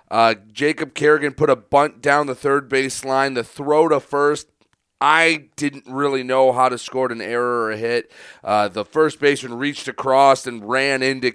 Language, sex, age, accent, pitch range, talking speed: English, male, 30-49, American, 130-145 Hz, 185 wpm